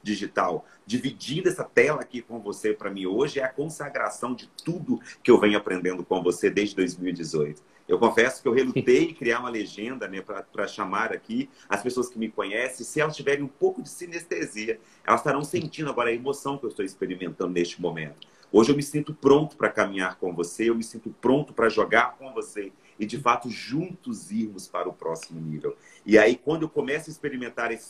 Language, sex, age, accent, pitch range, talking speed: Portuguese, male, 40-59, Brazilian, 110-165 Hz, 200 wpm